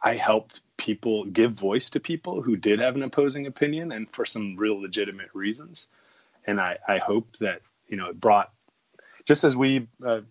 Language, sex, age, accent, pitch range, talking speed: English, male, 30-49, American, 100-125 Hz, 185 wpm